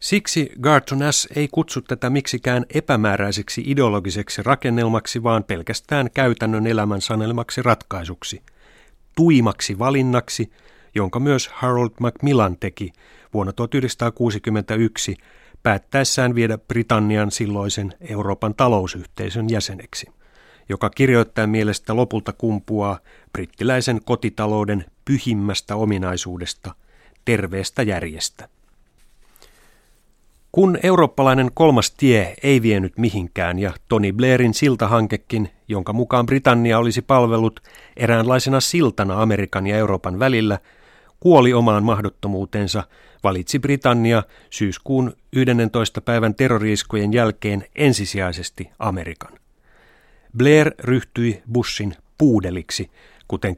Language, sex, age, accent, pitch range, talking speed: Finnish, male, 30-49, native, 100-125 Hz, 90 wpm